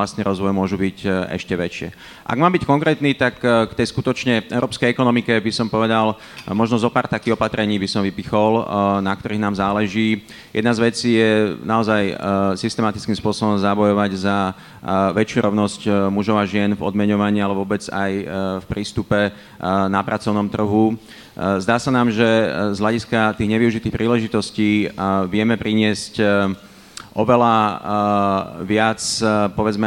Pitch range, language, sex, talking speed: 100-110 Hz, Slovak, male, 145 wpm